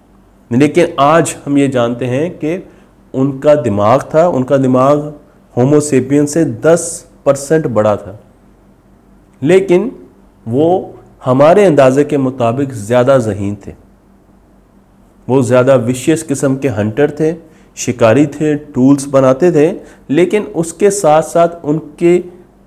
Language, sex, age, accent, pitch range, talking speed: Hindi, male, 40-59, native, 125-155 Hz, 120 wpm